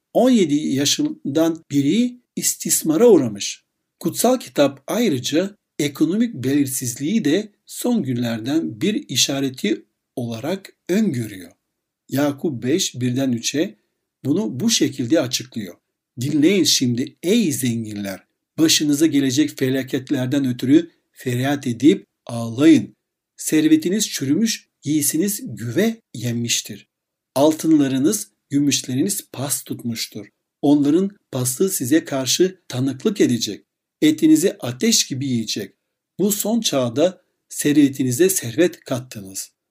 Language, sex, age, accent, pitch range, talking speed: Turkish, male, 60-79, native, 130-205 Hz, 90 wpm